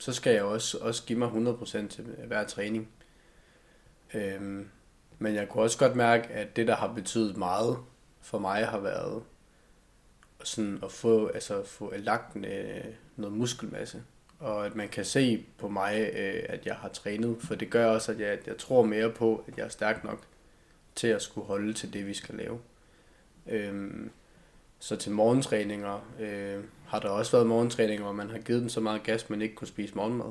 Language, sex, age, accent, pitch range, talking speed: Danish, male, 20-39, native, 105-115 Hz, 180 wpm